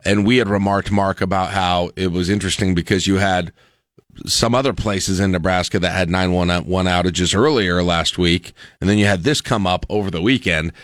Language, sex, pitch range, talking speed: English, male, 95-125 Hz, 205 wpm